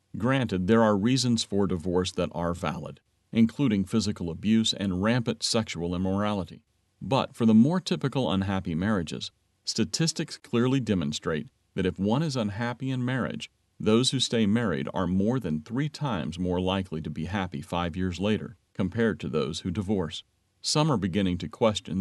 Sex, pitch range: male, 90-120 Hz